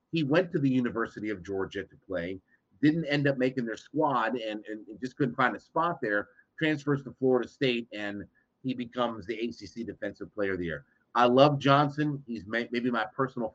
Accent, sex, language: American, male, English